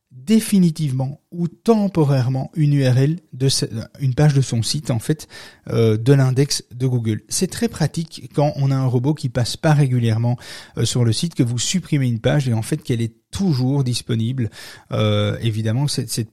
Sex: male